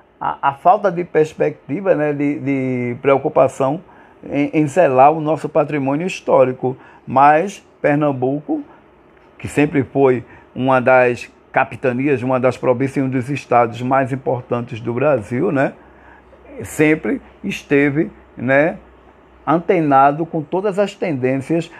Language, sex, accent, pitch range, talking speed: Portuguese, male, Brazilian, 130-165 Hz, 120 wpm